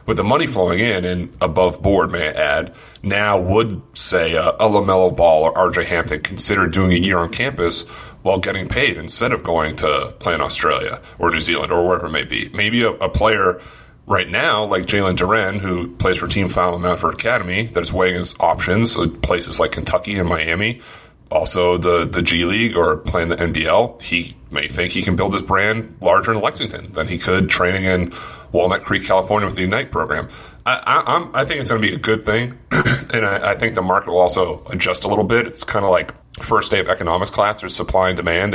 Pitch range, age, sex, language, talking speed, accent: 90-110 Hz, 30-49, male, English, 220 wpm, American